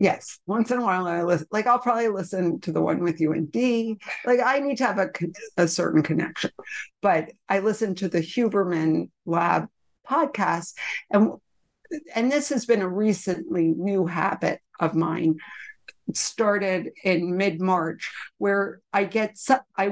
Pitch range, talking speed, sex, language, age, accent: 170-205 Hz, 165 wpm, female, English, 50-69, American